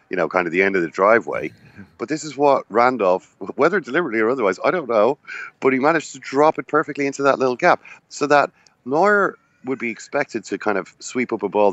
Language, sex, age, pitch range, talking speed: English, male, 30-49, 110-155 Hz, 230 wpm